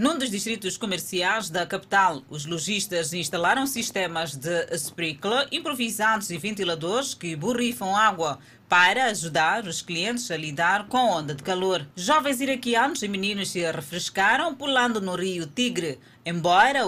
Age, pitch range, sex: 20-39, 170-220 Hz, female